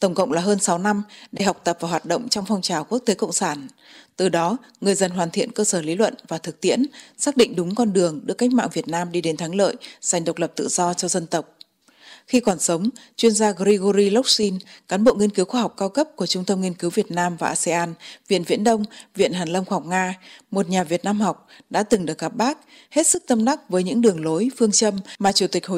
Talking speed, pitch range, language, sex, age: 260 wpm, 175-235 Hz, Vietnamese, female, 20-39